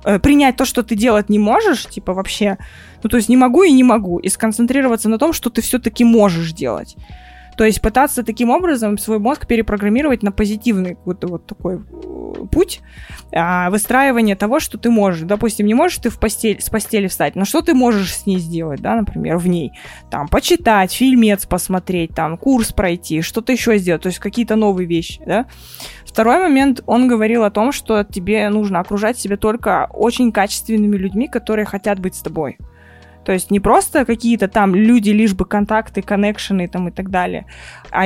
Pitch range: 185-235 Hz